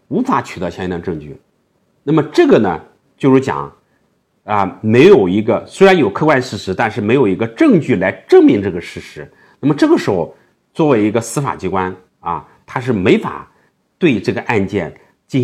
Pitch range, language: 105-165 Hz, Chinese